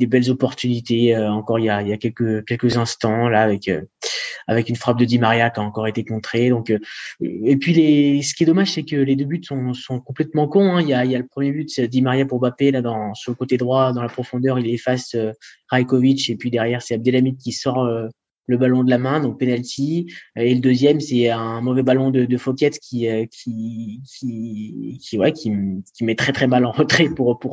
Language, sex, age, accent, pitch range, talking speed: French, male, 20-39, French, 115-140 Hz, 250 wpm